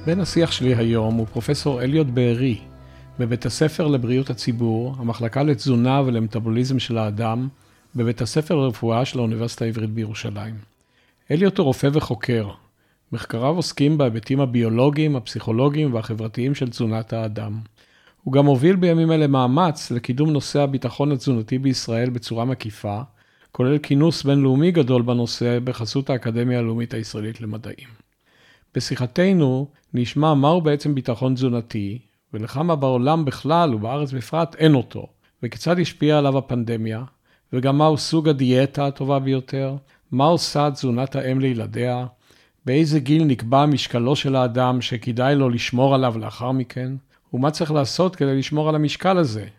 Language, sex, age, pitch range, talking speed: Hebrew, male, 50-69, 115-145 Hz, 130 wpm